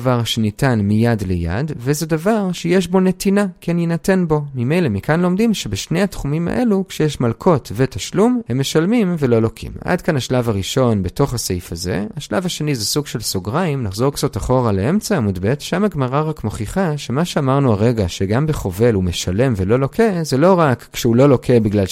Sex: male